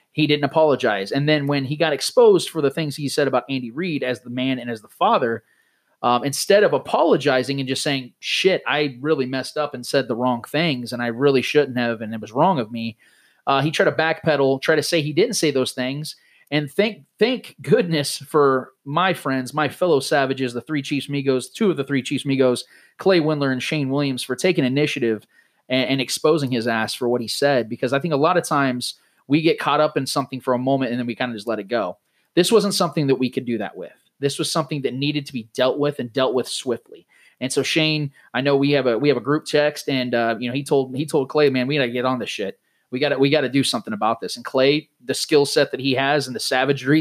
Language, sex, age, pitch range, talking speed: English, male, 30-49, 130-150 Hz, 255 wpm